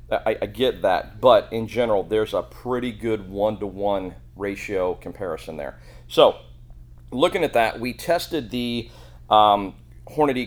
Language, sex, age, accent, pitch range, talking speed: English, male, 40-59, American, 95-115 Hz, 140 wpm